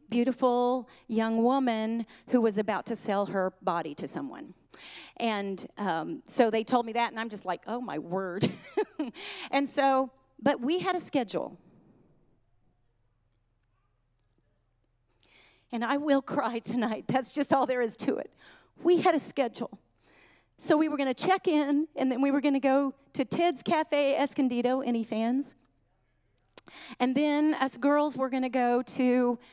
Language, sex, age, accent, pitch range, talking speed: English, female, 40-59, American, 180-260 Hz, 160 wpm